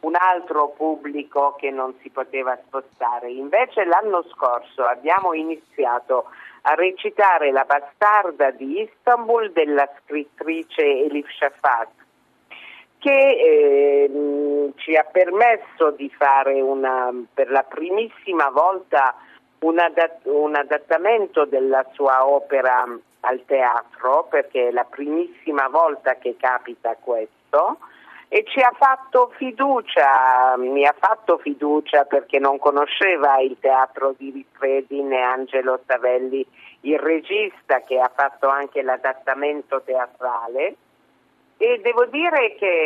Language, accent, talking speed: Italian, native, 110 wpm